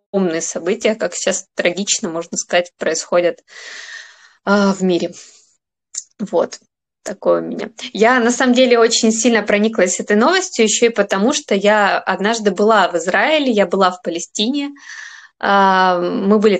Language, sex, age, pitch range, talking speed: Russian, female, 20-39, 190-230 Hz, 135 wpm